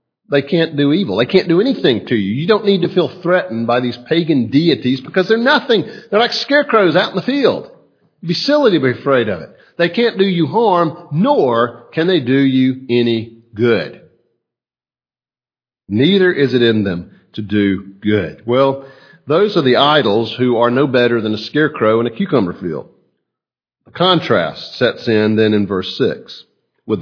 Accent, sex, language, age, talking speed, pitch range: American, male, English, 50-69, 185 wpm, 120-175 Hz